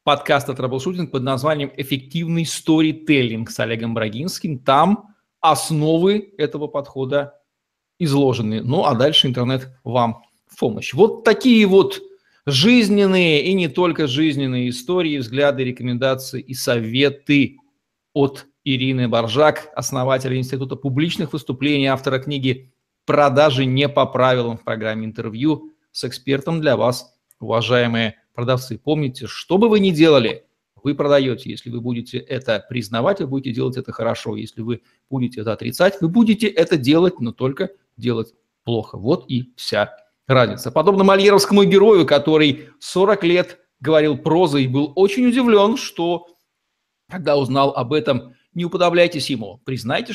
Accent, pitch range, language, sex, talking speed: native, 125-165 Hz, Russian, male, 135 wpm